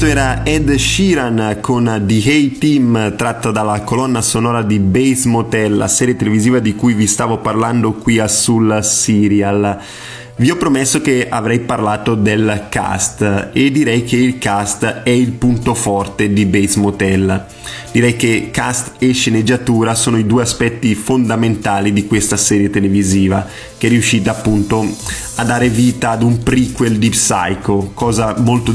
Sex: male